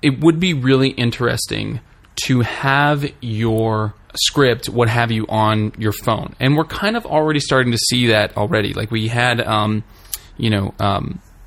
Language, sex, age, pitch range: English, male, 20-39, 105-125 Hz